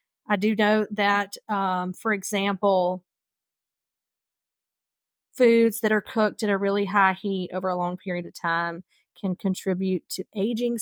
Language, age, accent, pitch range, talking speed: English, 40-59, American, 200-245 Hz, 145 wpm